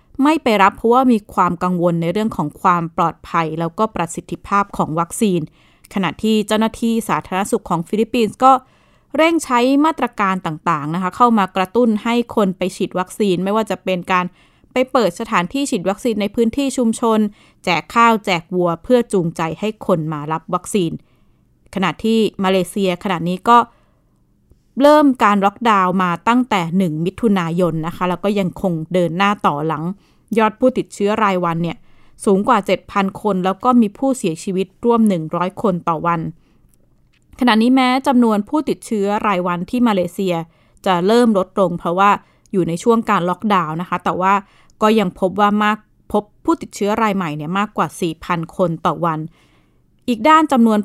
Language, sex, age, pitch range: Thai, female, 20-39, 180-225 Hz